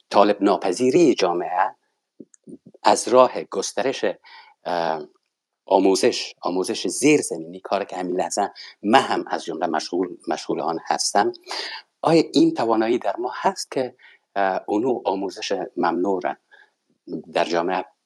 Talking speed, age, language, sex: 110 wpm, 50-69, Persian, male